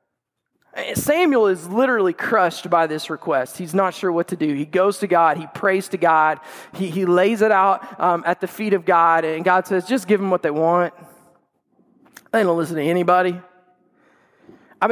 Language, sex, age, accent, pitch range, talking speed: English, male, 20-39, American, 180-255 Hz, 190 wpm